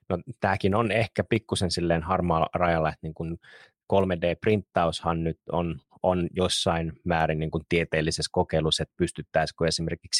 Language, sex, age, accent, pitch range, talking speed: Finnish, male, 30-49, native, 85-105 Hz, 125 wpm